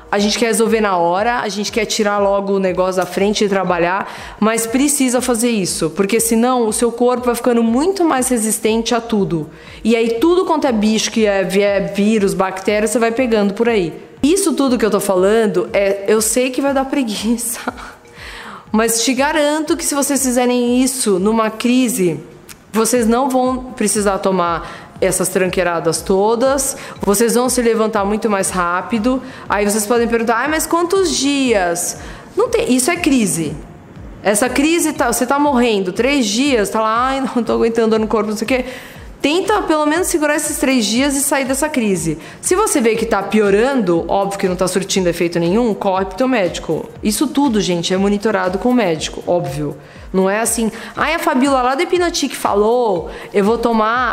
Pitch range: 200-255 Hz